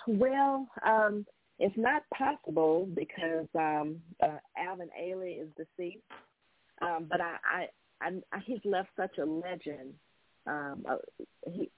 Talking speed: 120 wpm